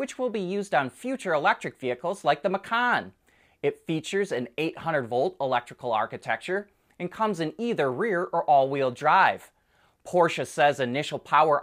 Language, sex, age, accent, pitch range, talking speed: English, male, 30-49, American, 130-195 Hz, 150 wpm